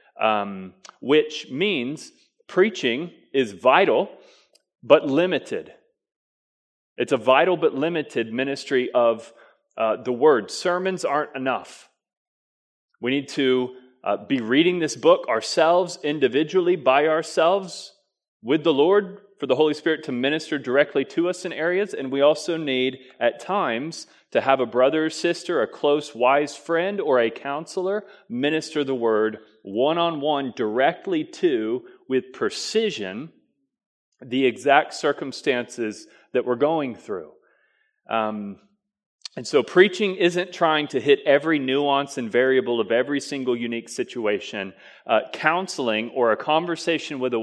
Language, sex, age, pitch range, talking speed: English, male, 30-49, 130-185 Hz, 135 wpm